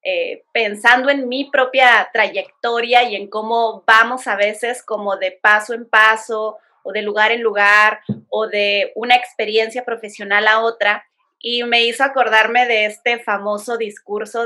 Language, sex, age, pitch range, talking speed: Spanish, female, 30-49, 215-260 Hz, 155 wpm